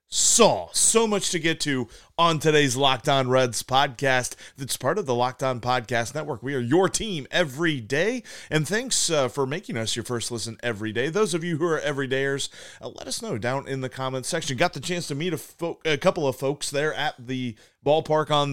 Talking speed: 215 wpm